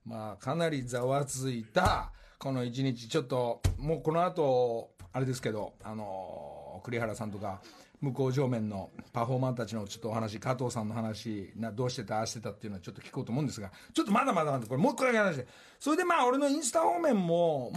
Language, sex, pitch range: Japanese, male, 105-145 Hz